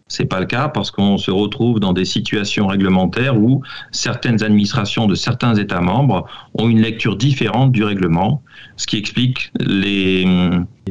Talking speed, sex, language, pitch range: 160 wpm, male, French, 100-125 Hz